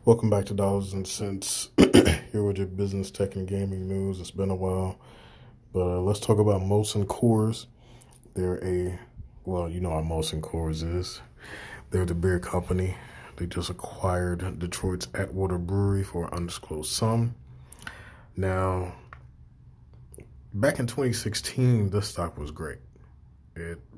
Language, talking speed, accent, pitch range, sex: English, 145 wpm, American, 80-95 Hz, male